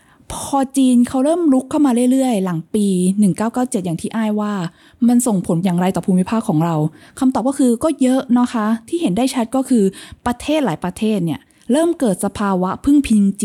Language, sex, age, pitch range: Thai, female, 20-39, 190-245 Hz